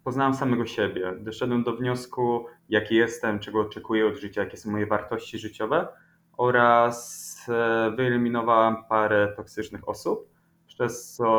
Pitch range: 105-120 Hz